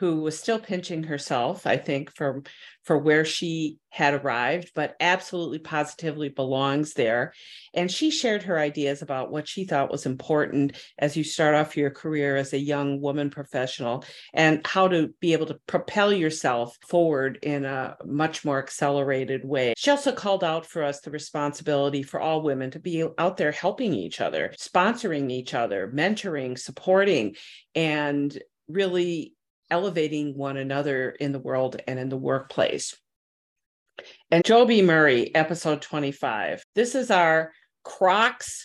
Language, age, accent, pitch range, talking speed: English, 50-69, American, 140-175 Hz, 155 wpm